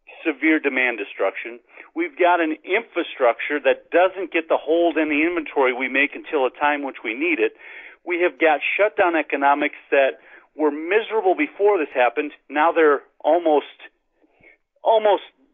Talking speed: 150 wpm